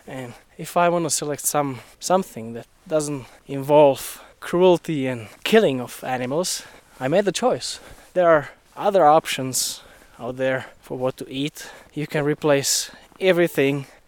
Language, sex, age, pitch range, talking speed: English, male, 20-39, 125-160 Hz, 145 wpm